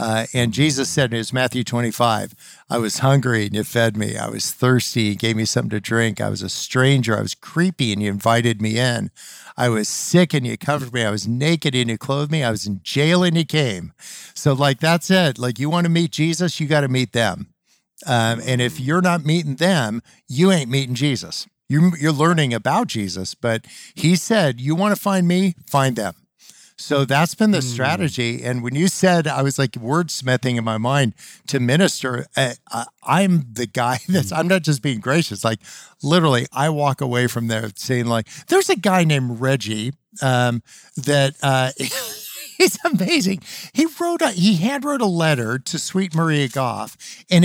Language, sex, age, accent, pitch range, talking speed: English, male, 50-69, American, 125-180 Hz, 195 wpm